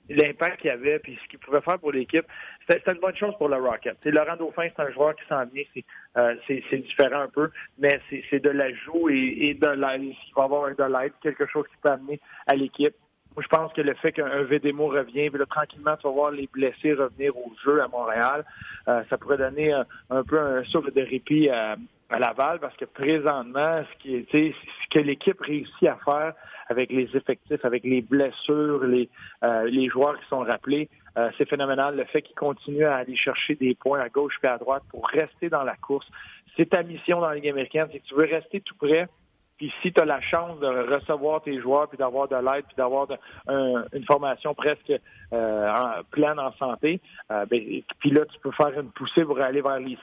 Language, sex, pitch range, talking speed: French, male, 130-150 Hz, 230 wpm